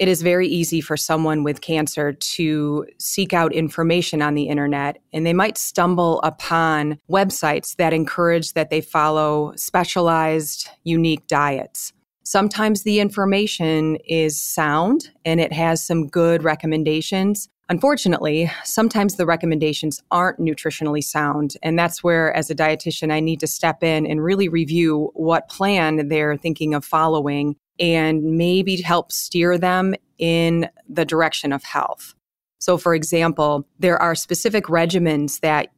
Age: 30-49